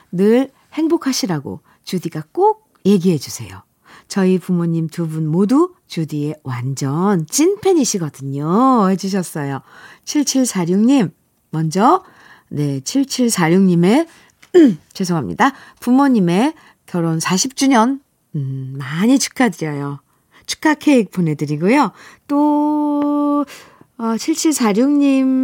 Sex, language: female, Korean